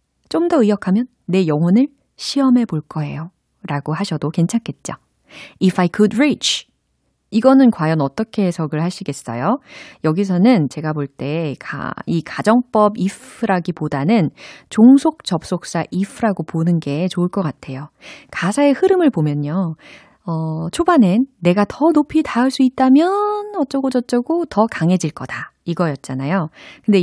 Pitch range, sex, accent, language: 160-230 Hz, female, native, Korean